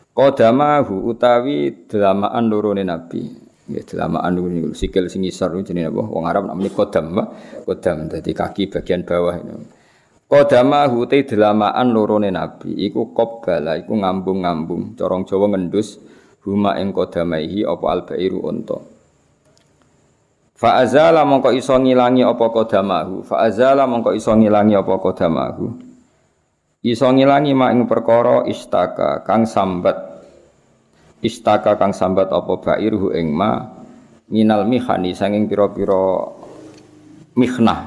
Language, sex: Indonesian, male